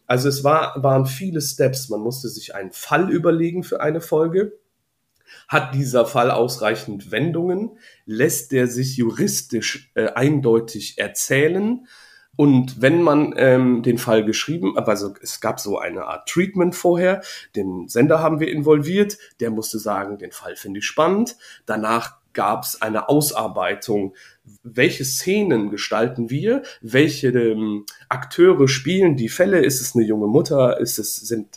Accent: German